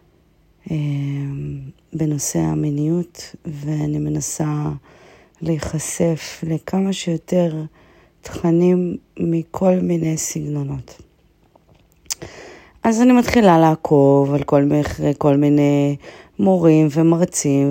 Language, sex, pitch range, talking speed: Hebrew, female, 150-175 Hz, 75 wpm